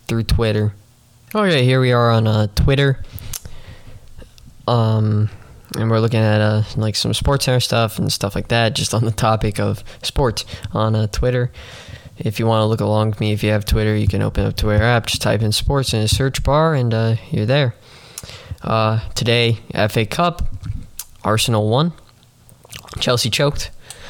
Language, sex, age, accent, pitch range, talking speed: English, male, 10-29, American, 105-125 Hz, 180 wpm